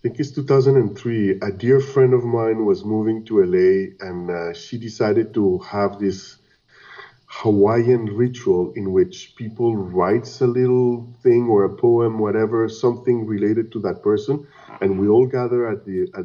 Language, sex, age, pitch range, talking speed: English, male, 50-69, 105-145 Hz, 160 wpm